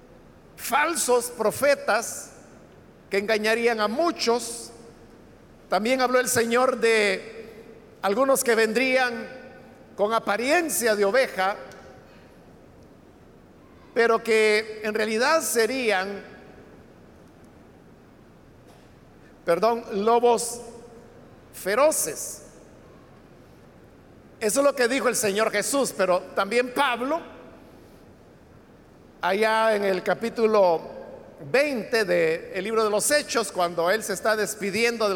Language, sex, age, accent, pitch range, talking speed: Spanish, male, 50-69, Mexican, 215-260 Hz, 90 wpm